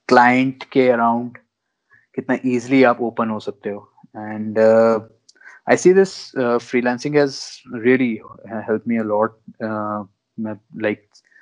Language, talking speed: Hindi, 100 wpm